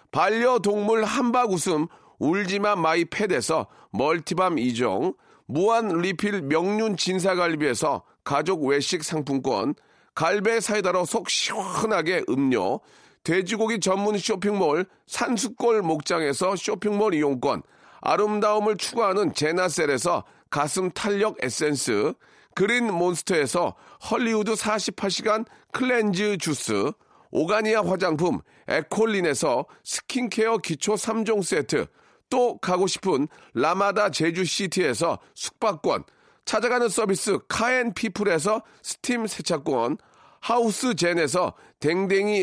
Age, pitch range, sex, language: 40-59, 180-230 Hz, male, Korean